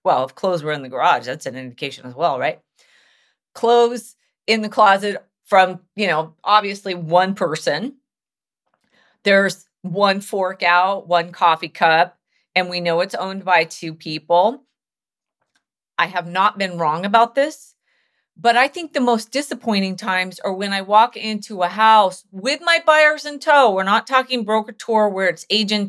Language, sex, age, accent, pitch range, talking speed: English, female, 40-59, American, 175-230 Hz, 165 wpm